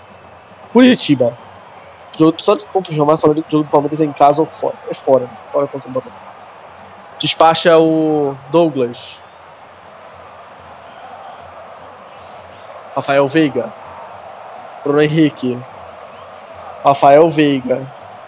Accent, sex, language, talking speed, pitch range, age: Brazilian, male, Portuguese, 80 wpm, 140-180 Hz, 20-39